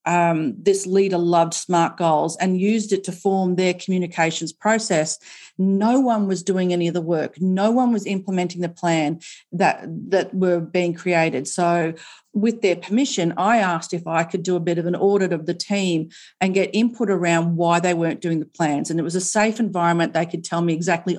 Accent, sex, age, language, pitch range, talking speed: Australian, female, 40-59, English, 175-210 Hz, 205 wpm